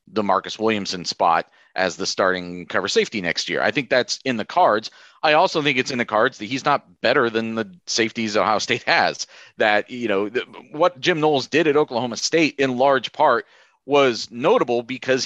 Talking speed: 195 wpm